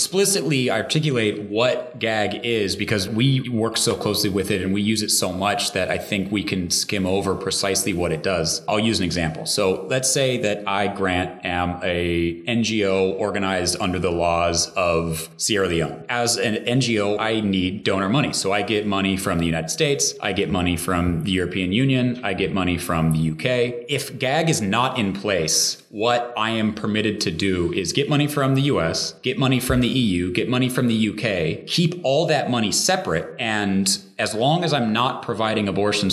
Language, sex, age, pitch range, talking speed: English, male, 30-49, 95-120 Hz, 195 wpm